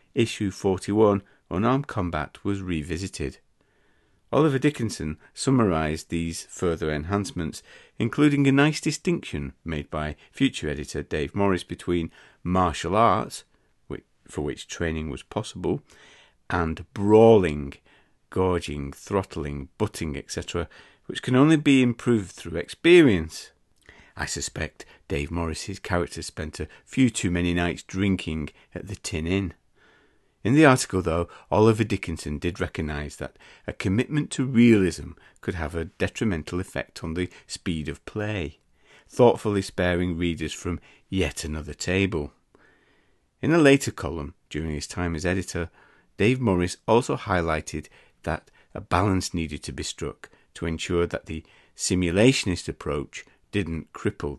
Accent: British